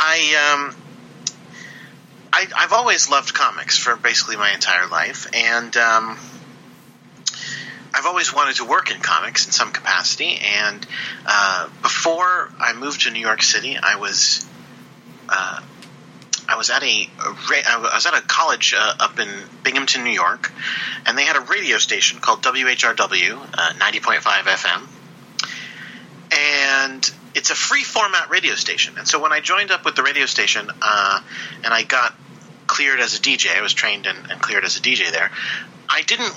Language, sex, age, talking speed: English, male, 40-59, 170 wpm